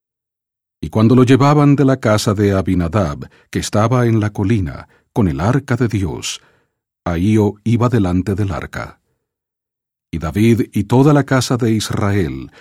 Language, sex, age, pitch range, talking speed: English, male, 50-69, 95-120 Hz, 150 wpm